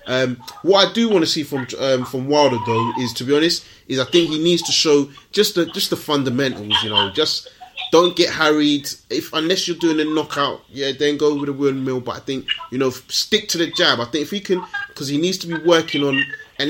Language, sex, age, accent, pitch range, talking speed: English, male, 30-49, British, 120-155 Hz, 245 wpm